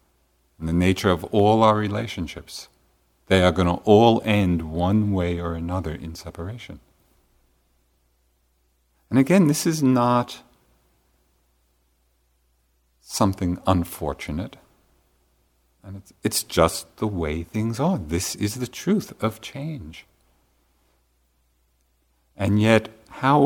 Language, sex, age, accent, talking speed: English, male, 50-69, American, 105 wpm